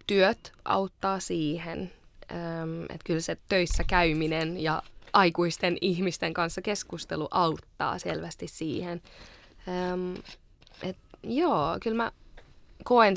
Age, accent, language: 20-39, native, Finnish